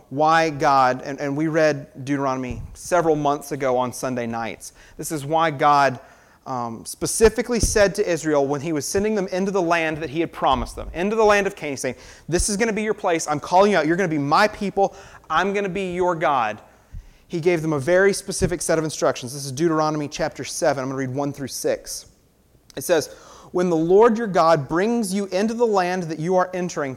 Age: 30-49